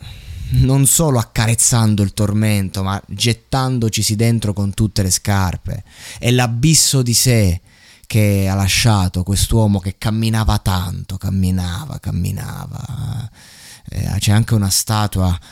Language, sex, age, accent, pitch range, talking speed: Italian, male, 20-39, native, 95-125 Hz, 110 wpm